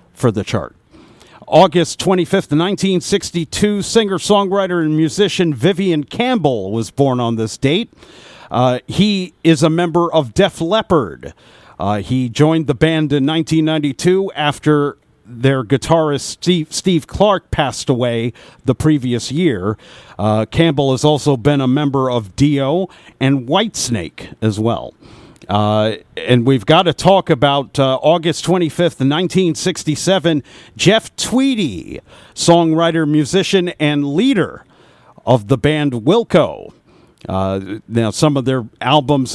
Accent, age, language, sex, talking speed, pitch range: American, 50-69, English, male, 125 wpm, 130-175 Hz